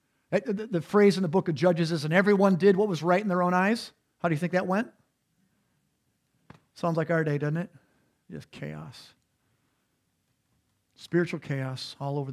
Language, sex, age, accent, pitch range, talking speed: English, male, 50-69, American, 150-195 Hz, 175 wpm